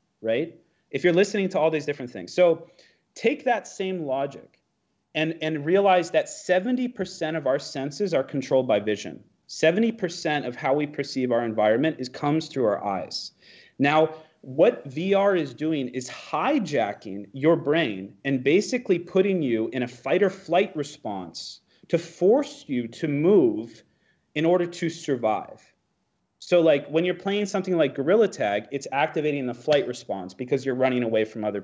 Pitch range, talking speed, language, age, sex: 130-175 Hz, 165 wpm, English, 30-49, male